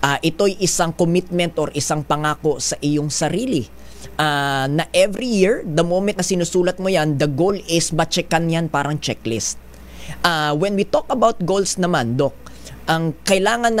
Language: English